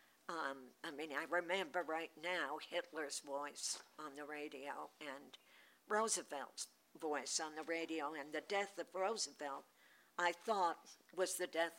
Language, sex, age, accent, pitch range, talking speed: English, female, 60-79, American, 155-190 Hz, 145 wpm